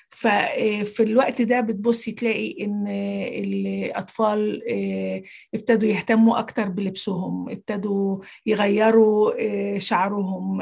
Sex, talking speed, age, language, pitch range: female, 80 wpm, 50-69, Arabic, 205-240 Hz